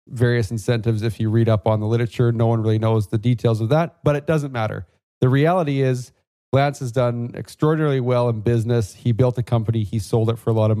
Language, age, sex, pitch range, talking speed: English, 40-59, male, 115-140 Hz, 235 wpm